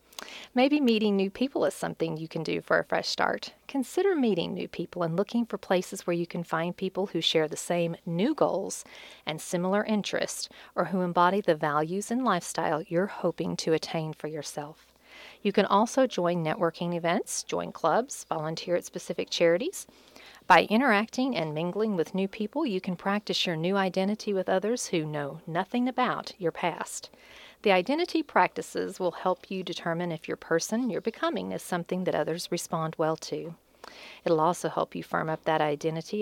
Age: 40-59